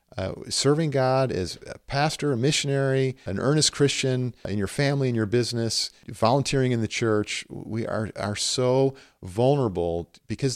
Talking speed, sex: 155 wpm, male